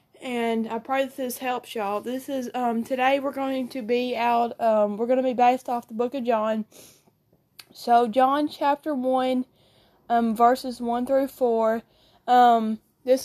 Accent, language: American, English